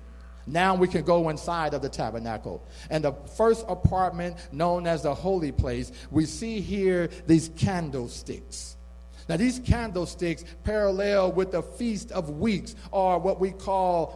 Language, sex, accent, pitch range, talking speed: English, male, American, 120-200 Hz, 150 wpm